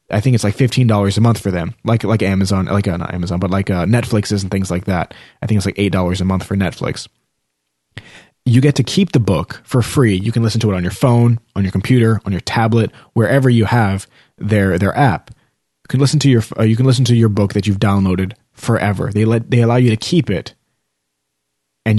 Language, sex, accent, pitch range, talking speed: English, male, American, 95-115 Hz, 235 wpm